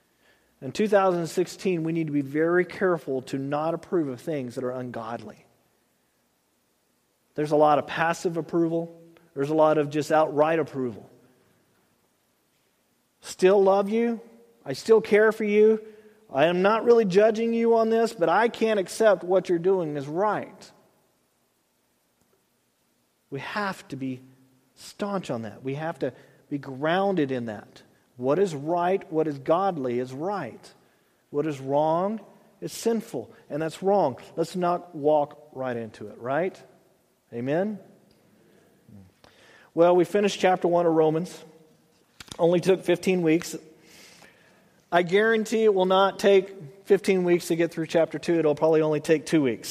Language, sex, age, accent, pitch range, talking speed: English, male, 40-59, American, 145-195 Hz, 145 wpm